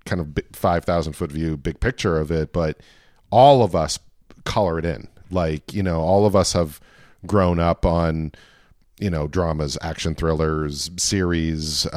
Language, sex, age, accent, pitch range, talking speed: English, male, 40-59, American, 80-100 Hz, 155 wpm